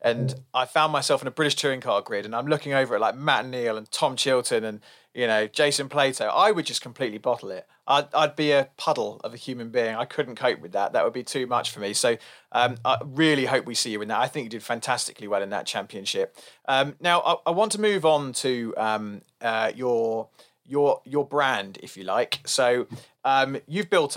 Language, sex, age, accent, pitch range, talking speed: English, male, 30-49, British, 115-145 Hz, 235 wpm